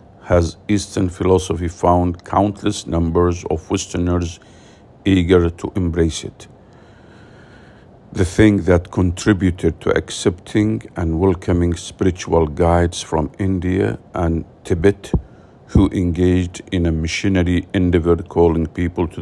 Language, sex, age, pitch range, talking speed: English, male, 50-69, 85-95 Hz, 110 wpm